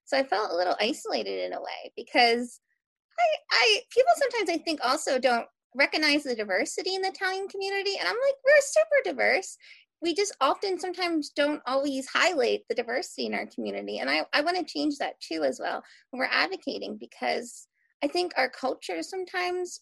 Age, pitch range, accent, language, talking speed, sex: 20-39, 245-345 Hz, American, English, 175 wpm, female